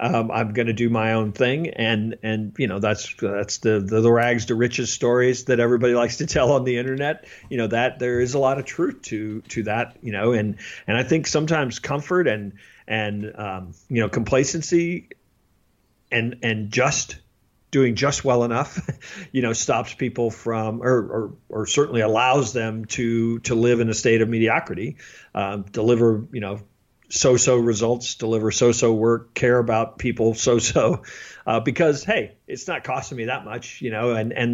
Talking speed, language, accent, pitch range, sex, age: 185 wpm, English, American, 110-125 Hz, male, 50-69